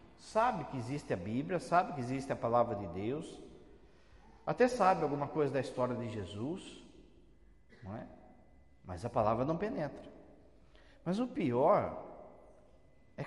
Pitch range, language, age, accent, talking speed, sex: 110-165 Hz, Portuguese, 50-69, Brazilian, 130 wpm, male